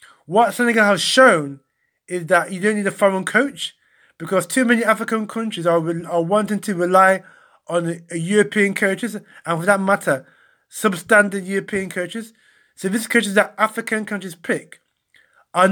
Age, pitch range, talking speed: 20-39, 160-195 Hz, 155 wpm